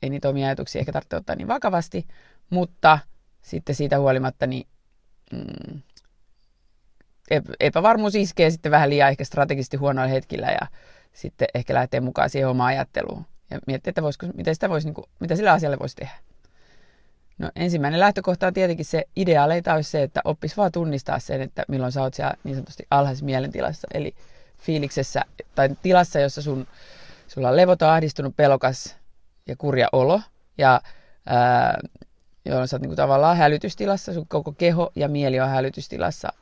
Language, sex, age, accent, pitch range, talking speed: Finnish, female, 30-49, native, 135-160 Hz, 155 wpm